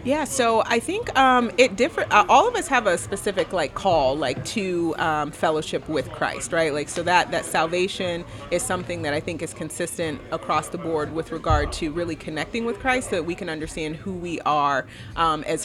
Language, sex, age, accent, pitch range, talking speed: English, female, 30-49, American, 160-195 Hz, 210 wpm